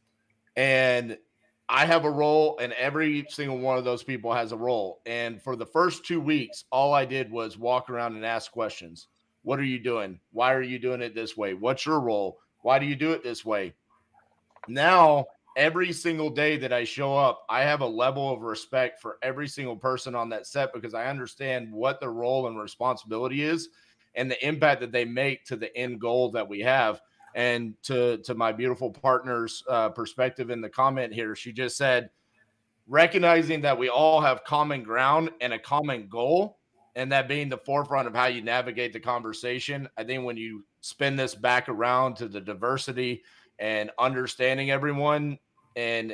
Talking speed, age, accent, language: 190 wpm, 30-49, American, English